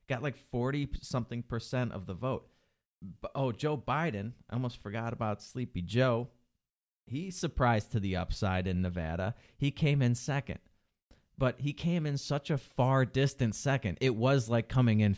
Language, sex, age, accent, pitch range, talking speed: English, male, 30-49, American, 95-120 Hz, 160 wpm